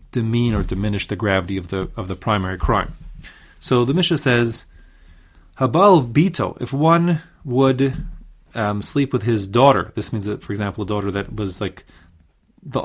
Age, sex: 30-49, male